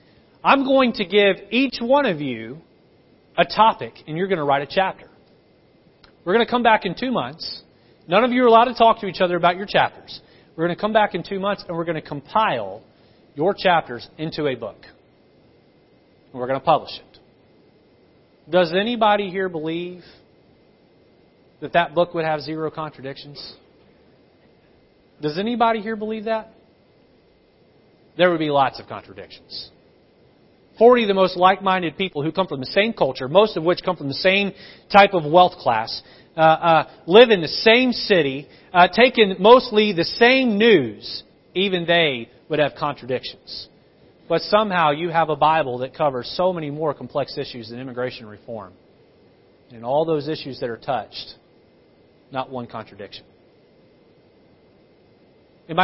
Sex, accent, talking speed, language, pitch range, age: male, American, 165 wpm, English, 140-200 Hz, 30-49